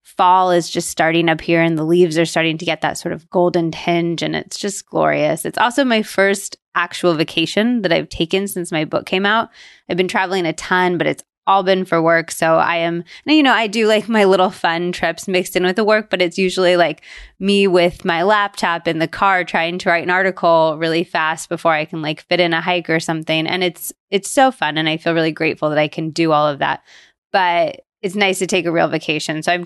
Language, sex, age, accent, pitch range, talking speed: English, female, 20-39, American, 165-195 Hz, 245 wpm